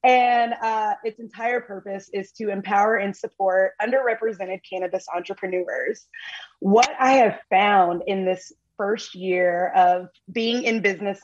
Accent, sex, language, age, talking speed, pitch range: American, female, English, 20-39, 135 wpm, 195-265 Hz